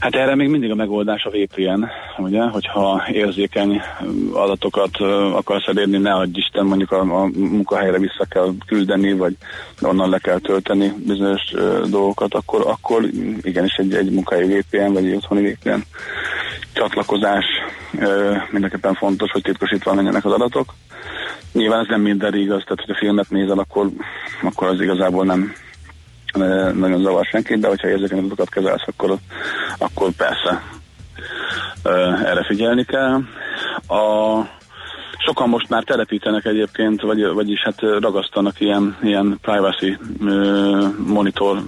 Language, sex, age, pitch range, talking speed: Hungarian, male, 30-49, 95-105 Hz, 130 wpm